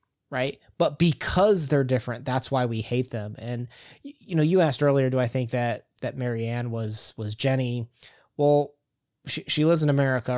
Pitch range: 120-145 Hz